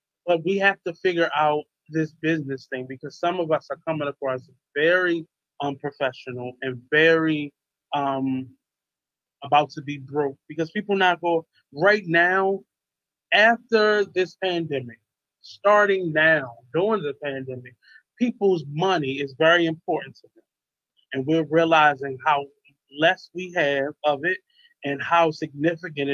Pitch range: 140-170 Hz